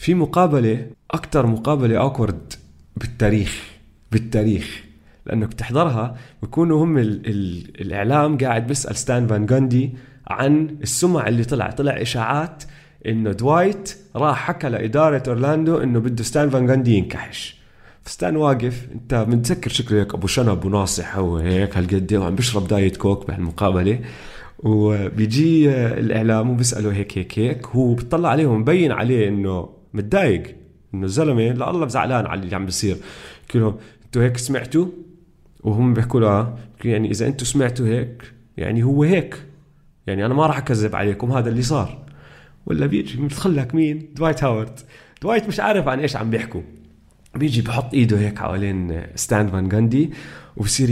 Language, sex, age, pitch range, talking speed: Arabic, male, 30-49, 105-145 Hz, 140 wpm